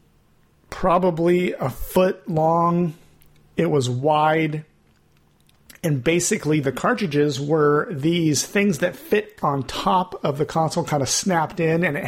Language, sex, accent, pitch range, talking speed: English, male, American, 145-170 Hz, 135 wpm